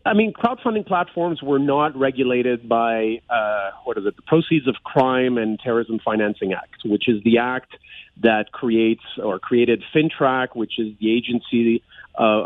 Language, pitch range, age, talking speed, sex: English, 110-135 Hz, 40-59, 165 wpm, male